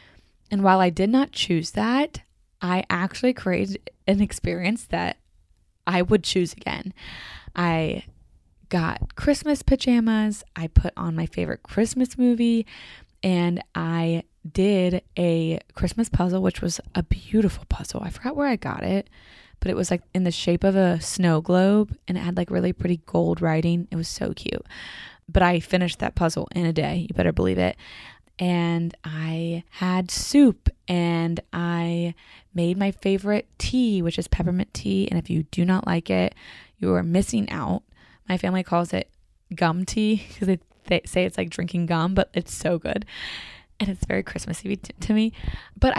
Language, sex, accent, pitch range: English, female, American, 170-205 Hz